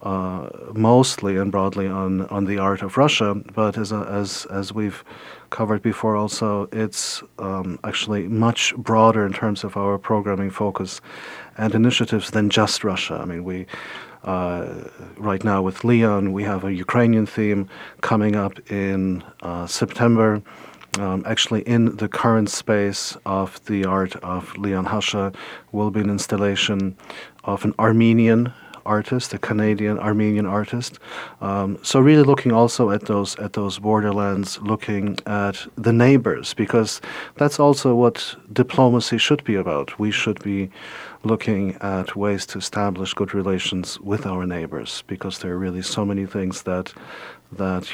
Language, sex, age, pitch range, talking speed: English, male, 40-59, 95-110 Hz, 150 wpm